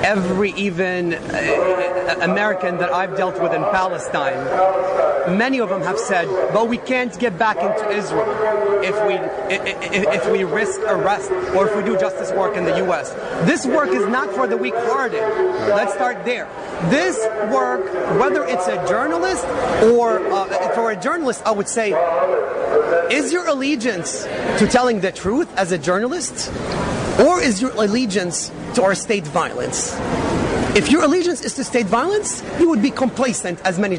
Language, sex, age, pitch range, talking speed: English, male, 30-49, 190-250 Hz, 165 wpm